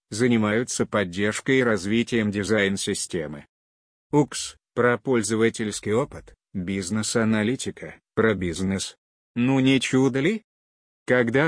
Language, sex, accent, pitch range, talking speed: Russian, male, native, 100-120 Hz, 90 wpm